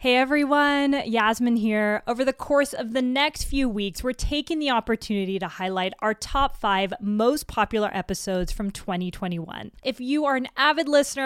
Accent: American